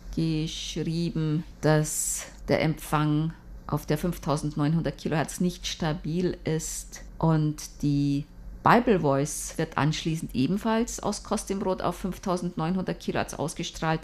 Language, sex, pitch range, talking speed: German, female, 150-205 Hz, 110 wpm